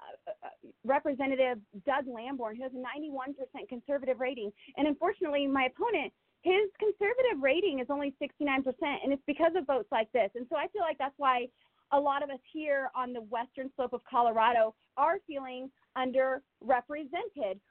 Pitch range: 230-295 Hz